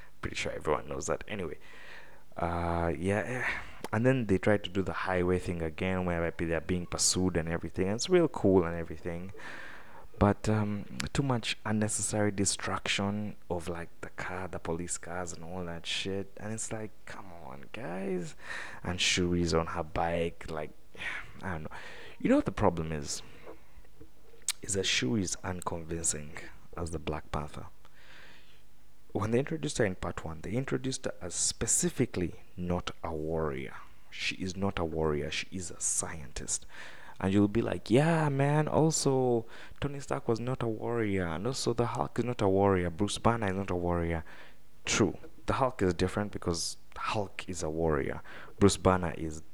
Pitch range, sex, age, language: 85-110 Hz, male, 20-39, English